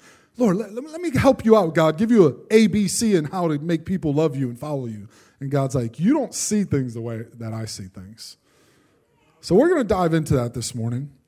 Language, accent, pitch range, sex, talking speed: English, American, 140-210 Hz, male, 230 wpm